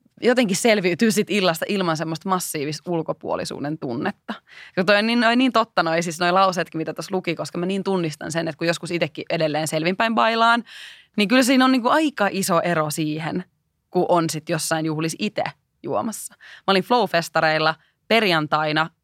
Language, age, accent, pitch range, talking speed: Finnish, 20-39, native, 160-215 Hz, 175 wpm